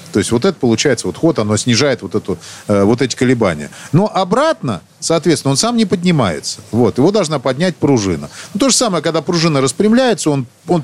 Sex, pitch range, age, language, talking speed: male, 130-185 Hz, 40-59, Russian, 190 wpm